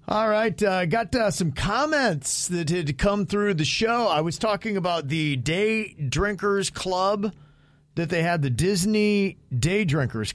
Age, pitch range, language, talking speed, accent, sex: 40-59, 125-170 Hz, English, 170 wpm, American, male